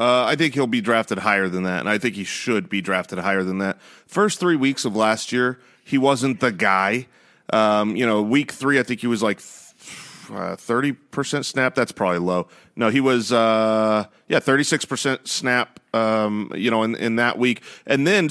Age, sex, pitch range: 30-49, male, 115-150 Hz